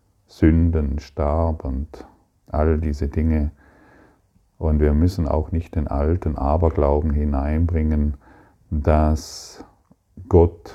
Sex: male